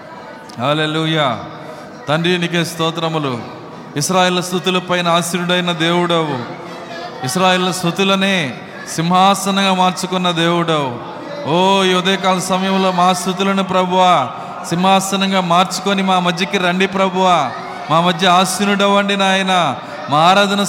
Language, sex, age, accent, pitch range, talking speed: Telugu, male, 30-49, native, 175-195 Hz, 85 wpm